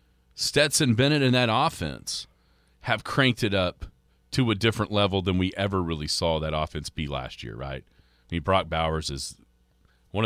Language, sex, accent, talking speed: English, male, American, 175 wpm